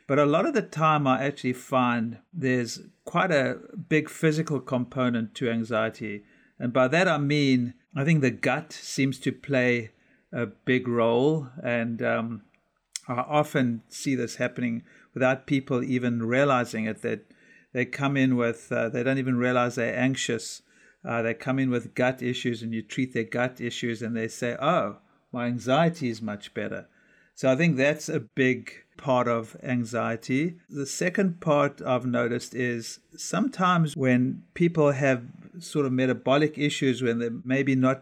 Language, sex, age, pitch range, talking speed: English, male, 50-69, 120-145 Hz, 165 wpm